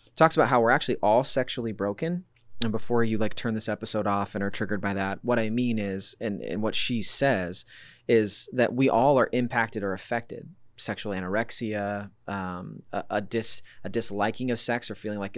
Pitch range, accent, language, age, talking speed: 105-125 Hz, American, English, 30-49, 190 wpm